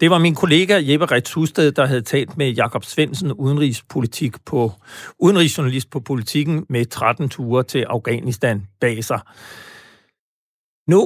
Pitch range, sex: 130-165 Hz, male